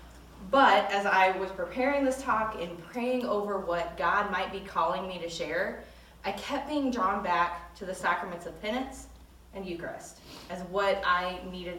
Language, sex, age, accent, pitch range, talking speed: English, female, 20-39, American, 180-245 Hz, 175 wpm